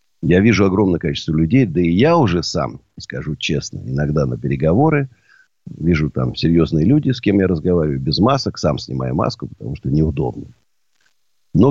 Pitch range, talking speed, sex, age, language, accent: 75-120 Hz, 165 wpm, male, 50-69, Russian, native